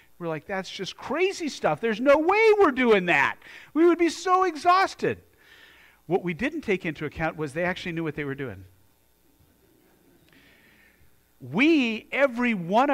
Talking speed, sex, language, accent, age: 160 wpm, male, English, American, 50-69